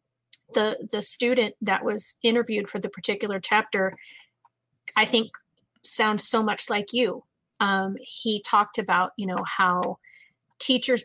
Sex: female